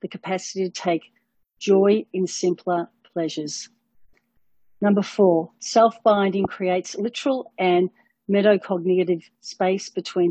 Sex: female